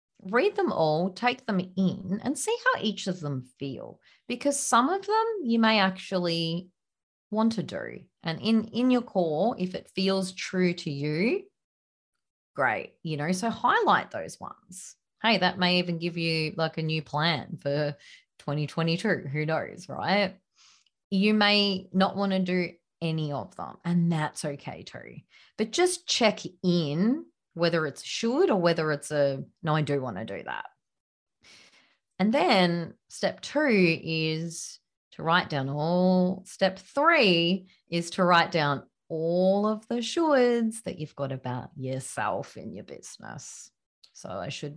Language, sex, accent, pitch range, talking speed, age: English, female, Australian, 150-210 Hz, 155 wpm, 30-49